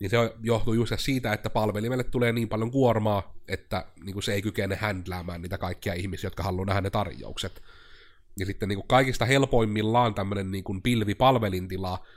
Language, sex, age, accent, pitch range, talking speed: Finnish, male, 30-49, native, 95-110 Hz, 165 wpm